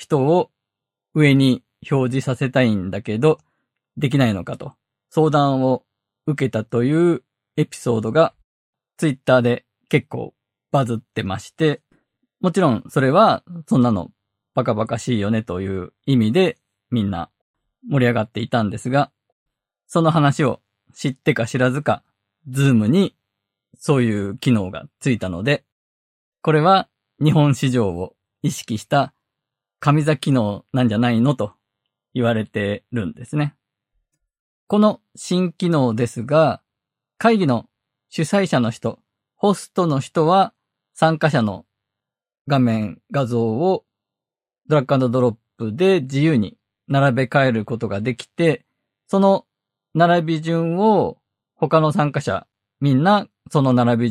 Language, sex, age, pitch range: Japanese, male, 20-39, 110-150 Hz